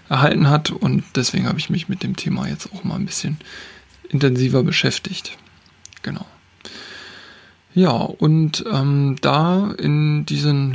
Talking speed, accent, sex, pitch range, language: 135 wpm, German, male, 135-165 Hz, German